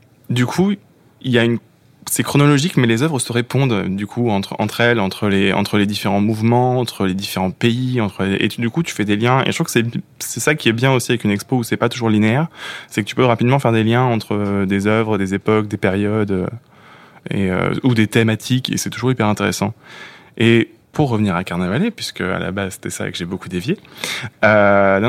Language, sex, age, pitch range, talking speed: French, male, 20-39, 100-125 Hz, 235 wpm